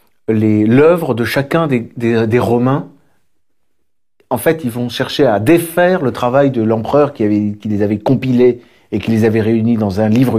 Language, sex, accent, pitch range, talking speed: French, male, French, 105-135 Hz, 175 wpm